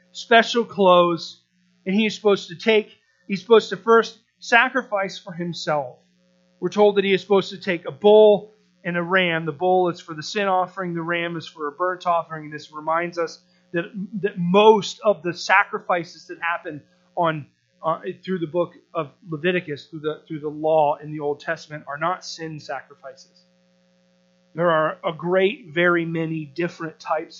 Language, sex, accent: English, male, American